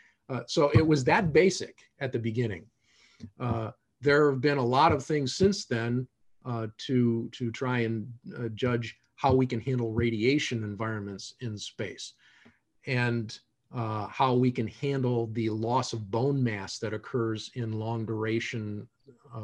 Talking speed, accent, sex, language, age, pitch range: 155 wpm, American, male, English, 50-69, 110-140 Hz